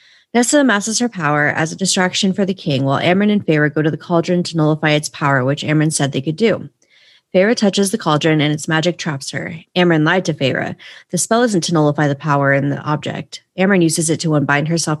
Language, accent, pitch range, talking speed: English, American, 155-195 Hz, 230 wpm